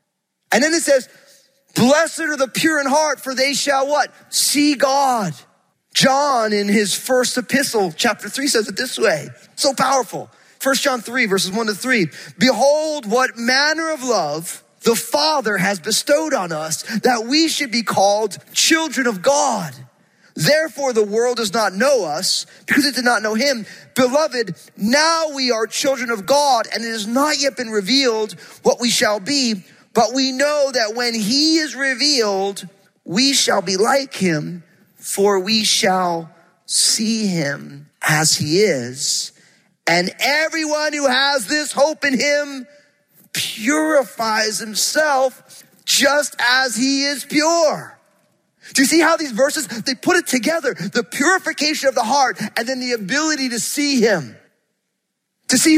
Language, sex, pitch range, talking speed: English, male, 205-280 Hz, 155 wpm